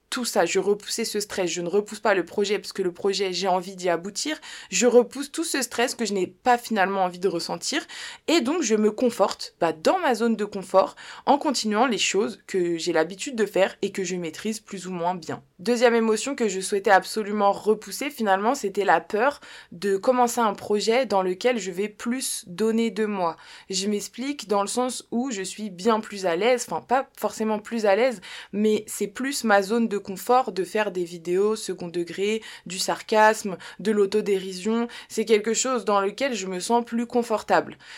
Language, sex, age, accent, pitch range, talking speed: French, female, 20-39, French, 190-230 Hz, 205 wpm